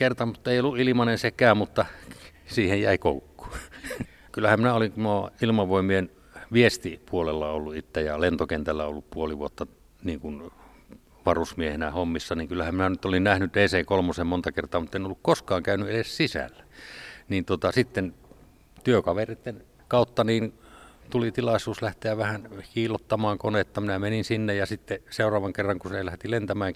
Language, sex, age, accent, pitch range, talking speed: Finnish, male, 60-79, native, 85-110 Hz, 140 wpm